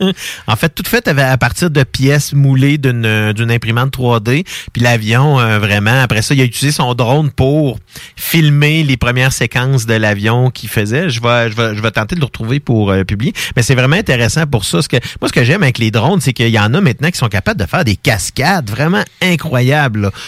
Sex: male